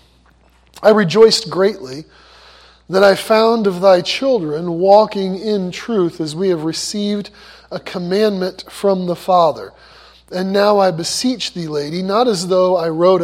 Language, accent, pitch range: English, American, 175-215 Hz